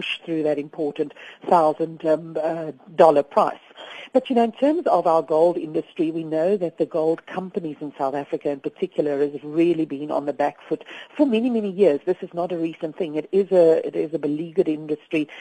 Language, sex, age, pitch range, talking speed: English, female, 50-69, 150-180 Hz, 200 wpm